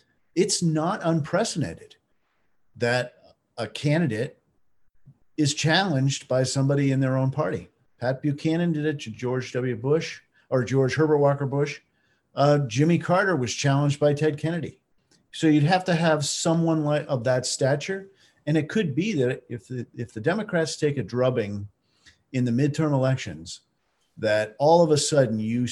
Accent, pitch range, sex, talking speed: American, 125-155 Hz, male, 155 wpm